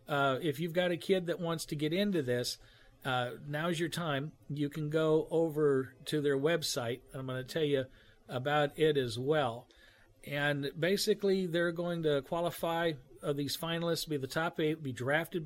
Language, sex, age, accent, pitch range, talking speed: English, male, 50-69, American, 135-165 Hz, 185 wpm